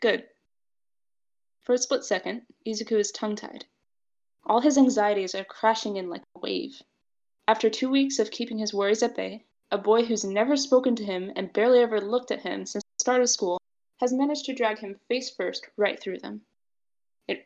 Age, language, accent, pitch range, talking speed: 20-39, English, American, 200-250 Hz, 185 wpm